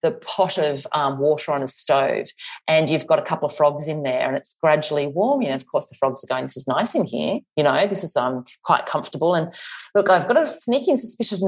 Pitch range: 150-200 Hz